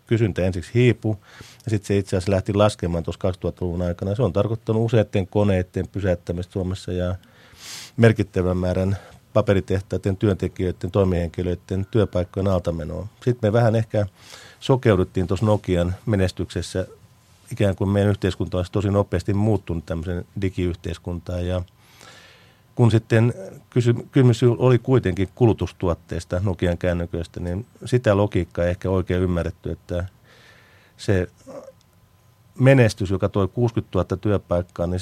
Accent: native